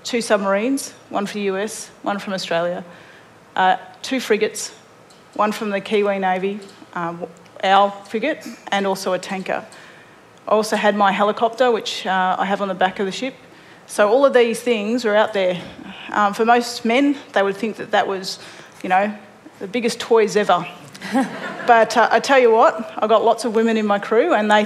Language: English